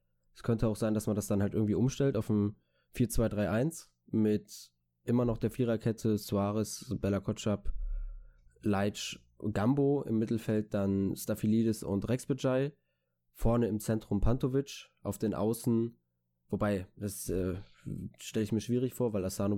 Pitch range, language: 95-115 Hz, German